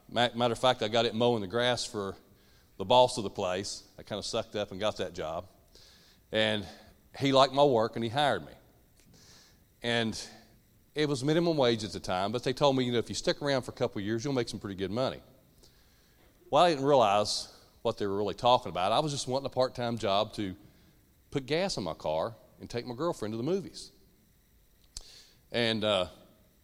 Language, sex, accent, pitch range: English, male, American, 105-140 Hz